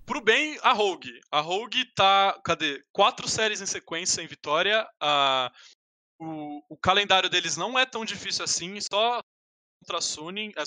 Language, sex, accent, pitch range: Portuguese, male, Brazilian, 160-225 Hz